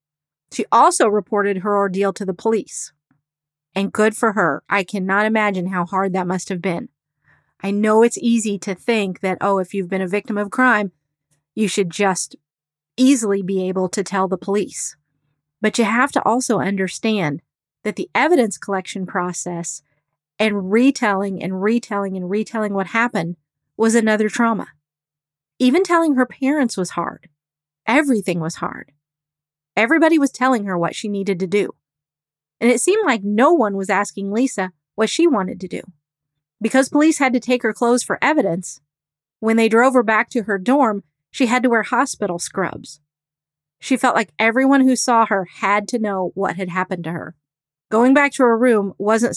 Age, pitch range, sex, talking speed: 40-59, 170-230 Hz, female, 175 wpm